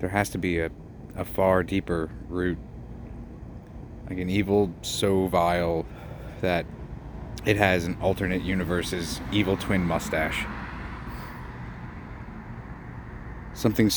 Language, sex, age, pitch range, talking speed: English, male, 30-49, 85-95 Hz, 105 wpm